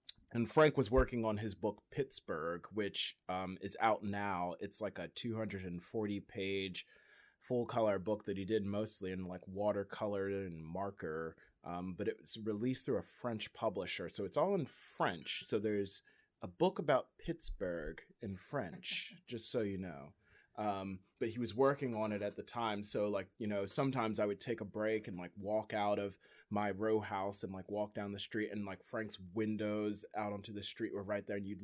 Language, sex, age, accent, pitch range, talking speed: English, male, 20-39, American, 95-110 Hz, 190 wpm